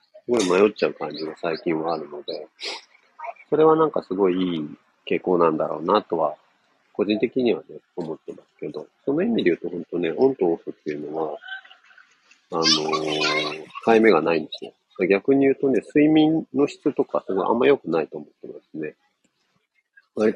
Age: 40-59